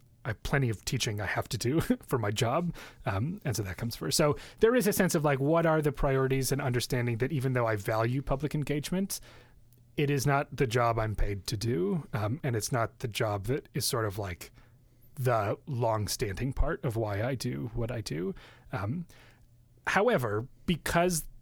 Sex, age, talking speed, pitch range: male, 30-49, 200 wpm, 120-155 Hz